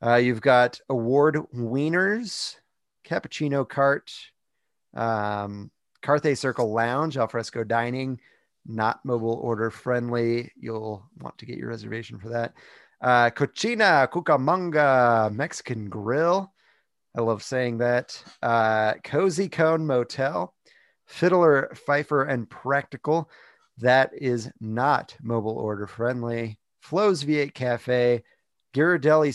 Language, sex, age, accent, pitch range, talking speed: English, male, 30-49, American, 115-145 Hz, 105 wpm